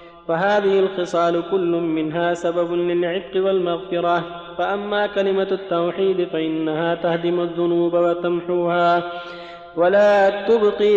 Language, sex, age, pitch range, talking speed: Arabic, male, 30-49, 170-195 Hz, 90 wpm